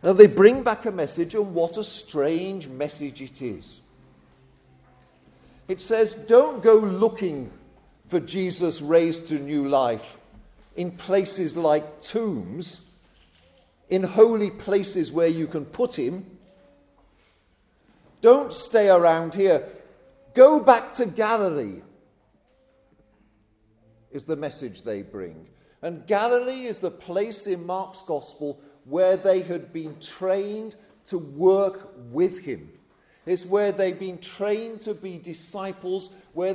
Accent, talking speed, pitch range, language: British, 120 wpm, 165-210 Hz, English